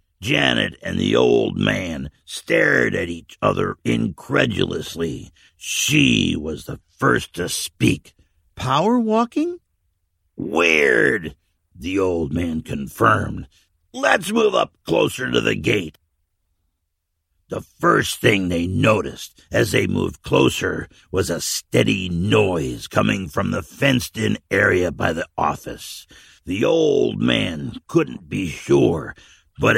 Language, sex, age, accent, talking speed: English, male, 60-79, American, 115 wpm